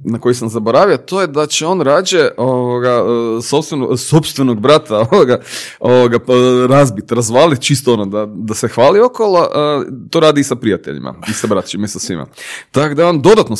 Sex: male